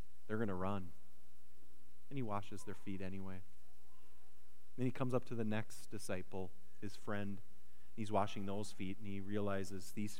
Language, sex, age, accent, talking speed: English, male, 30-49, American, 170 wpm